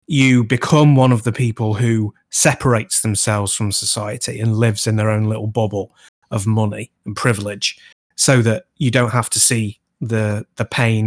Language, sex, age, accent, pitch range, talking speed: English, male, 20-39, British, 110-145 Hz, 175 wpm